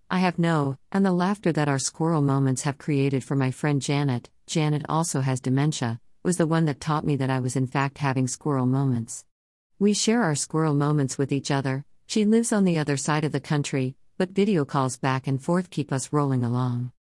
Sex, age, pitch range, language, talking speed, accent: female, 50-69, 130-165 Hz, English, 215 wpm, American